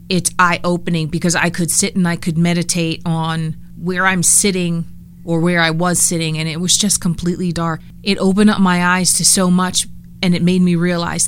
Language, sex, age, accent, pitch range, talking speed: English, female, 30-49, American, 165-180 Hz, 205 wpm